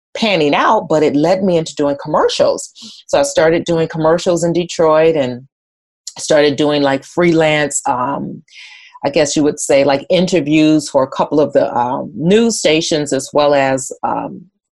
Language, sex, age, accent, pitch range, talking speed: English, female, 30-49, American, 140-170 Hz, 165 wpm